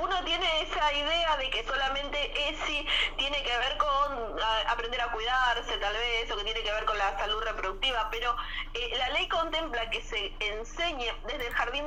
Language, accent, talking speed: Spanish, Argentinian, 185 wpm